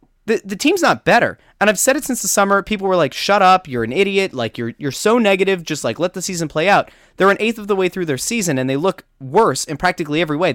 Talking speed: 280 wpm